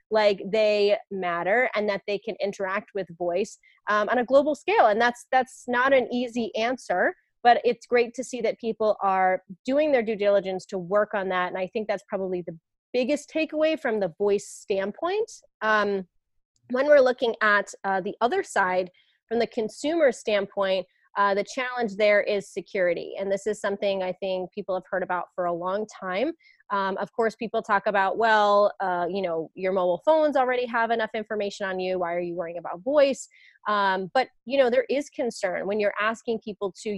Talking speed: 195 wpm